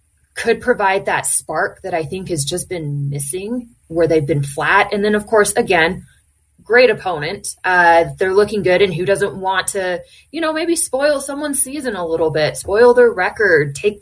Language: English